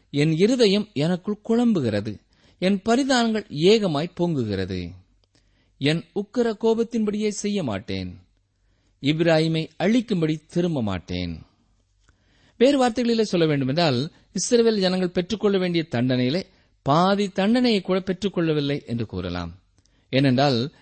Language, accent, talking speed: Tamil, native, 100 wpm